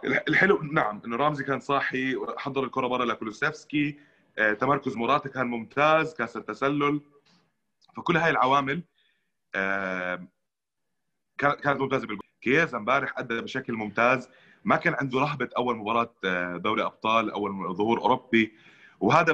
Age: 20-39